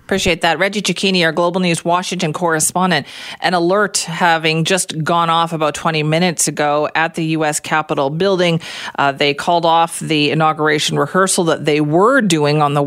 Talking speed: 175 wpm